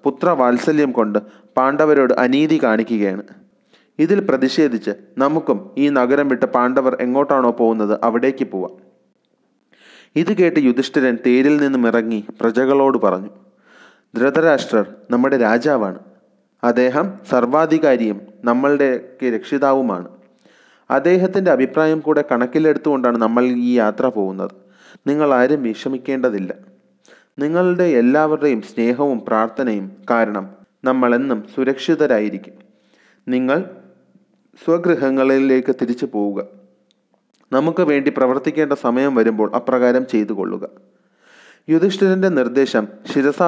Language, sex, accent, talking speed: Malayalam, male, native, 90 wpm